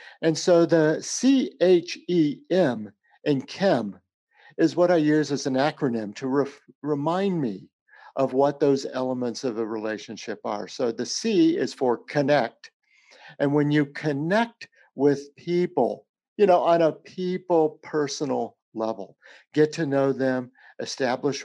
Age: 50-69